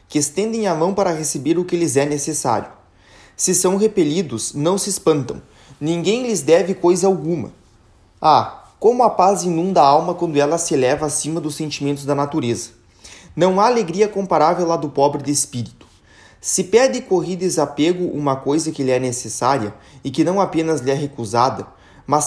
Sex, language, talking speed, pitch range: male, Portuguese, 180 wpm, 135-185 Hz